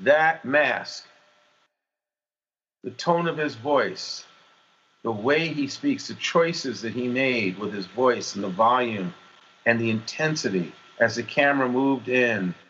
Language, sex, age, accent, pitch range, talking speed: English, male, 50-69, American, 125-175 Hz, 140 wpm